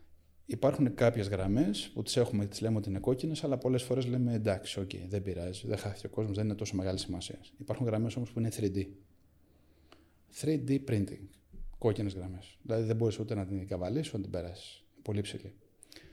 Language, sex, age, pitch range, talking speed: Greek, male, 30-49, 100-130 Hz, 190 wpm